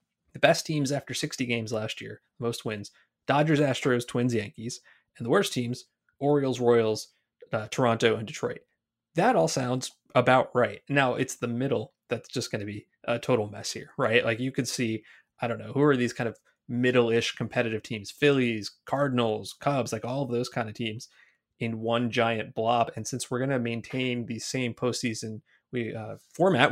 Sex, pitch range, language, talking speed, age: male, 115-140 Hz, English, 185 wpm, 20-39